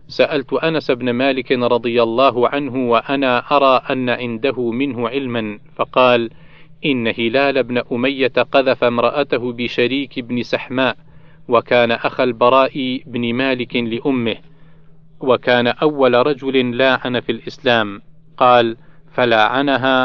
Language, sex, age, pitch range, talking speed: Arabic, male, 40-59, 120-145 Hz, 110 wpm